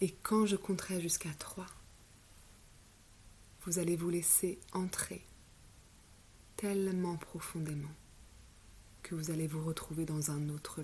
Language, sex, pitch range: French, female, 105-175 Hz